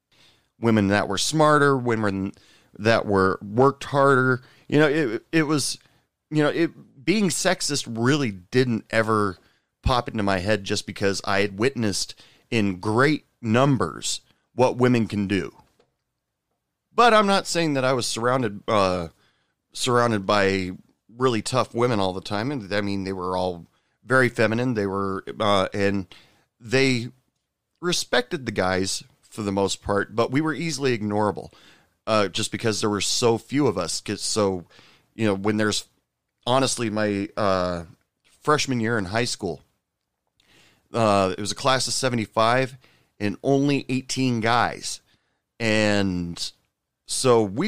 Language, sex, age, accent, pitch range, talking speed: English, male, 30-49, American, 100-130 Hz, 145 wpm